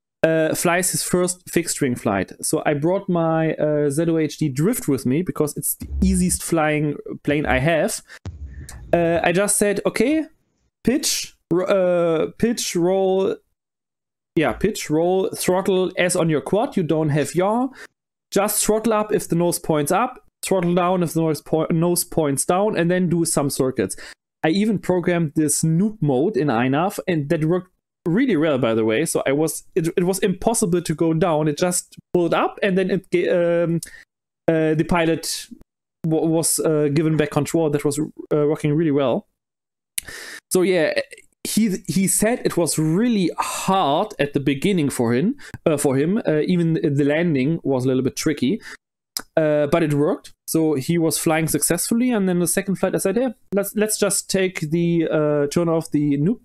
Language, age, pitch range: English, 30-49, 150-190 Hz